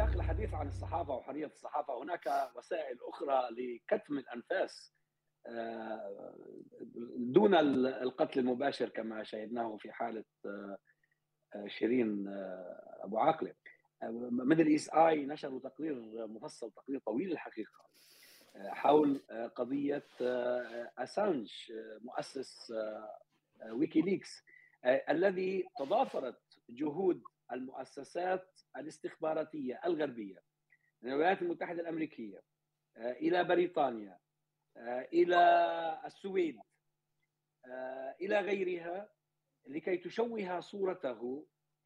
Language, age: Arabic, 40-59